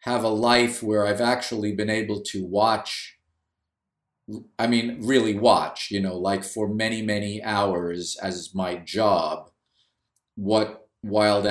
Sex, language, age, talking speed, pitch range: male, English, 50-69, 135 wpm, 95-115 Hz